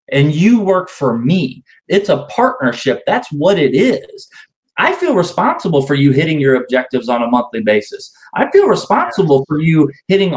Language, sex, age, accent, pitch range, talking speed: English, male, 30-49, American, 130-170 Hz, 175 wpm